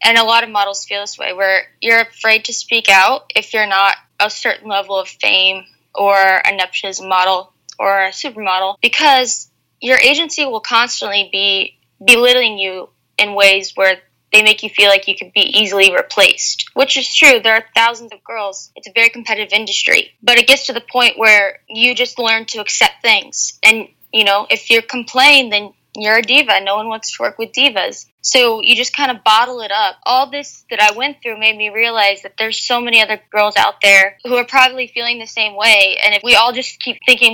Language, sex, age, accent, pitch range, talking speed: English, female, 10-29, American, 205-245 Hz, 210 wpm